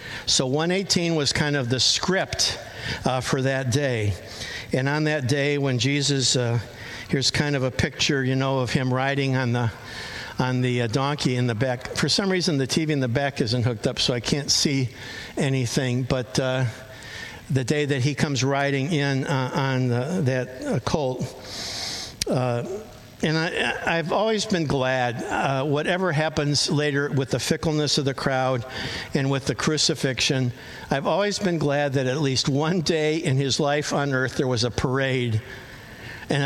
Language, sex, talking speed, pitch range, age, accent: English, male, 170 wpm, 125-150 Hz, 60-79, American